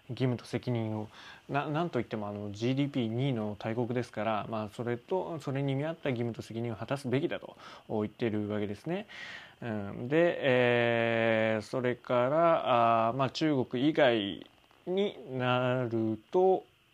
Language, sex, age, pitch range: Japanese, male, 20-39, 115-140 Hz